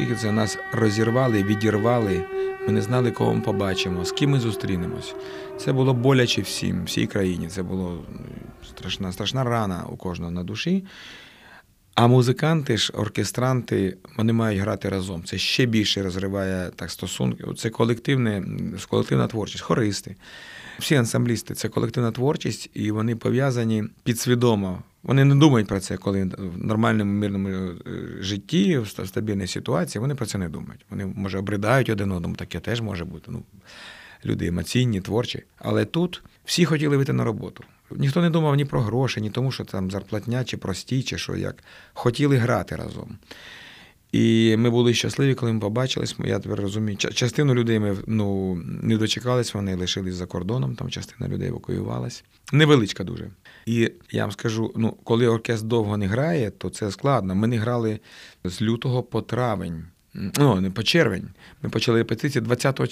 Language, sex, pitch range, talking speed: Ukrainian, male, 95-125 Hz, 160 wpm